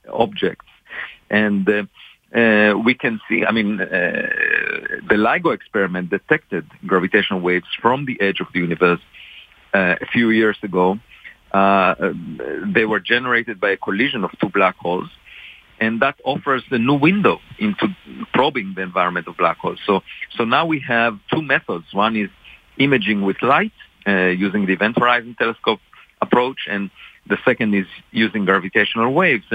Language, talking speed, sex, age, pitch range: English, 155 wpm, male, 40-59, 100-135 Hz